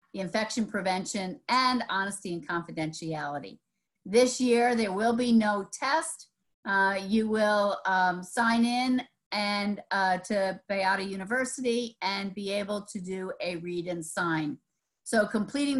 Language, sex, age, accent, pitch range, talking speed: English, female, 50-69, American, 190-230 Hz, 135 wpm